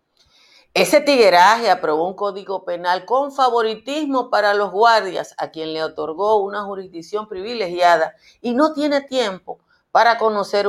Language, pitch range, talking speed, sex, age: Spanish, 165-240 Hz, 135 wpm, female, 50-69